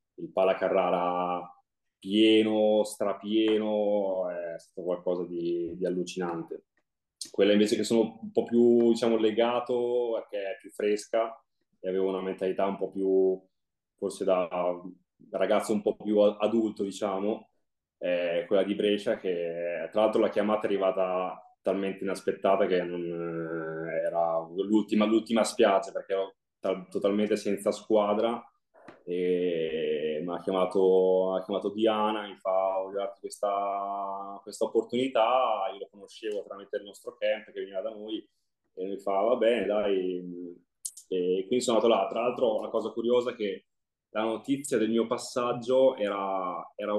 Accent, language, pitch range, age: native, Italian, 95-115 Hz, 20-39